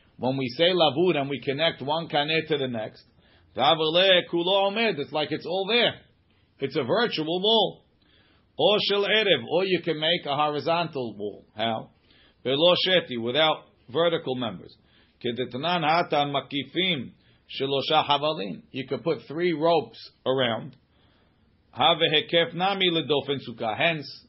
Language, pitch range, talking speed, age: English, 125-160 Hz, 95 wpm, 40-59